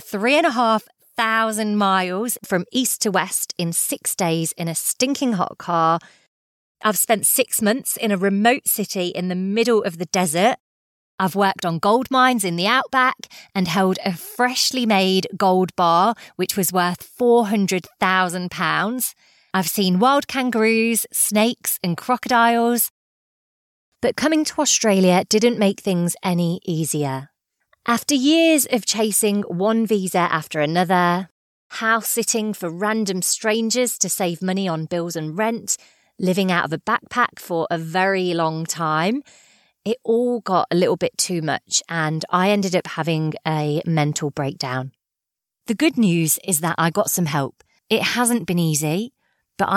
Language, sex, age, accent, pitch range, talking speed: English, female, 30-49, British, 175-230 Hz, 155 wpm